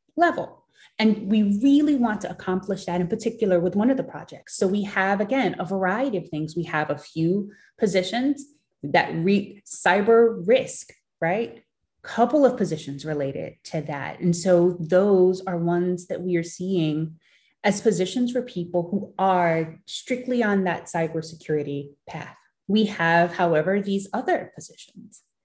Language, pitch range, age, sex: English, 165-205 Hz, 30-49, female